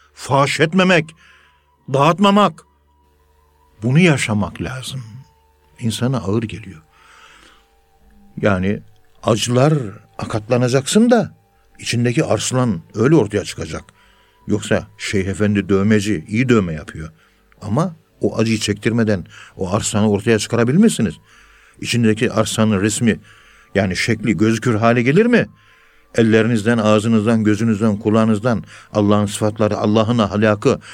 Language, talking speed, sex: Turkish, 95 wpm, male